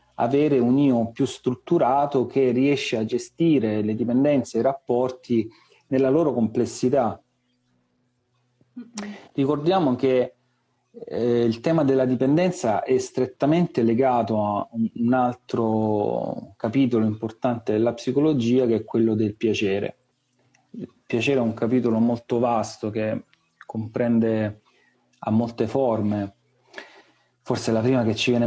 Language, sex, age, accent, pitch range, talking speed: Italian, male, 40-59, native, 110-130 Hz, 120 wpm